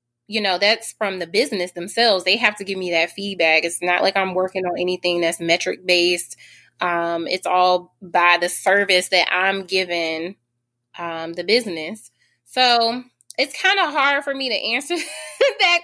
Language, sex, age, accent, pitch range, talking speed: English, female, 20-39, American, 175-220 Hz, 175 wpm